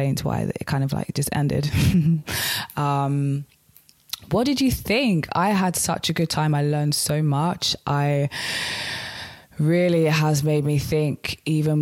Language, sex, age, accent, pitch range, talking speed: English, female, 20-39, British, 130-150 Hz, 150 wpm